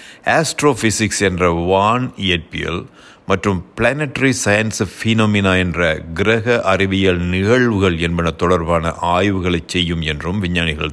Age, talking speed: 60-79, 100 wpm